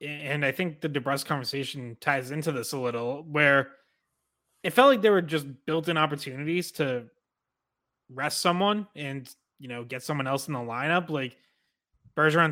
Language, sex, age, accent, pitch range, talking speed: English, male, 20-39, American, 130-155 Hz, 170 wpm